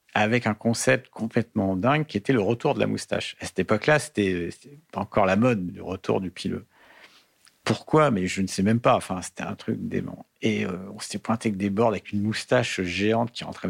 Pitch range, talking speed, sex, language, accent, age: 105-135 Hz, 230 wpm, male, French, French, 50-69